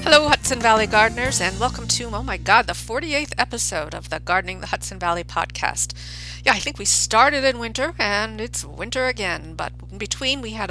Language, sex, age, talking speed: English, female, 50-69, 200 wpm